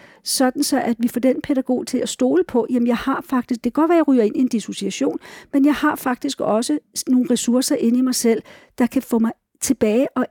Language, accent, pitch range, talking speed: Danish, native, 215-270 Hz, 250 wpm